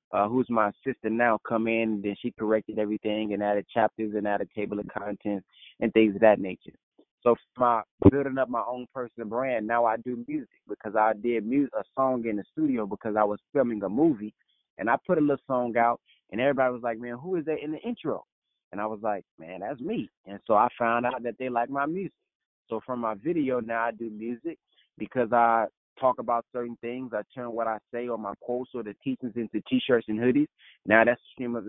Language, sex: English, male